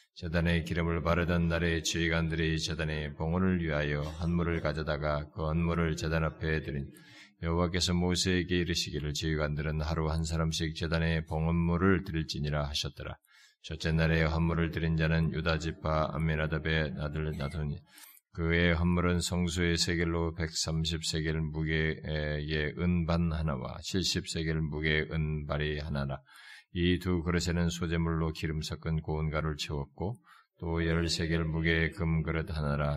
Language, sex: Korean, male